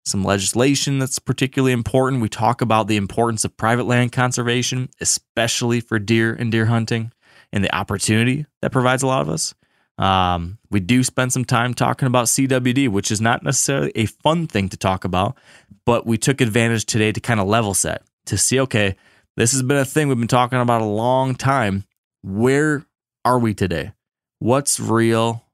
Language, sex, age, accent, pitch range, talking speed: English, male, 20-39, American, 100-125 Hz, 185 wpm